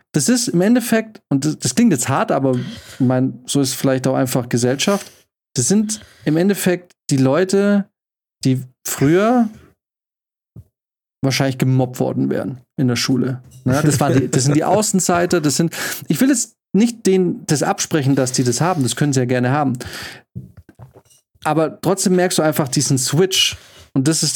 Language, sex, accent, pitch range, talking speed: German, male, German, 135-180 Hz, 175 wpm